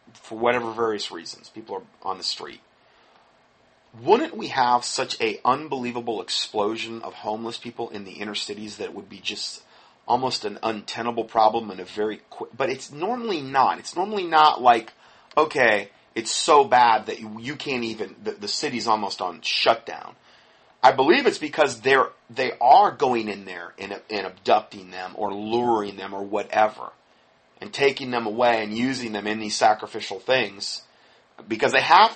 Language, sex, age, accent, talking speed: English, male, 30-49, American, 170 wpm